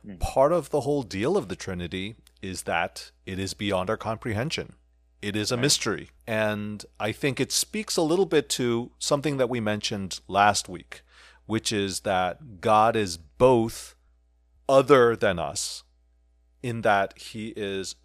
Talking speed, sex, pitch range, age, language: 155 wpm, male, 85-120 Hz, 40-59, English